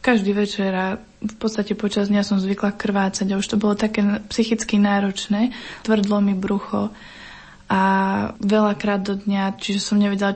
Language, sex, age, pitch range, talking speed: Slovak, female, 20-39, 195-215 Hz, 160 wpm